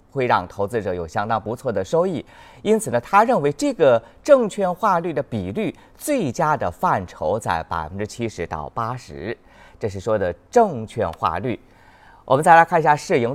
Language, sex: Chinese, male